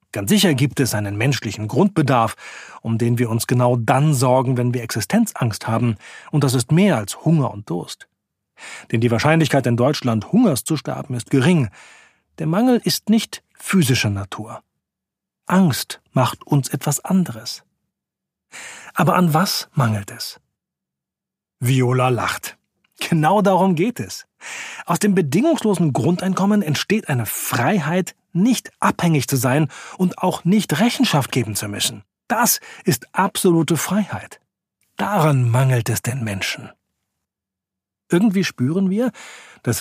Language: German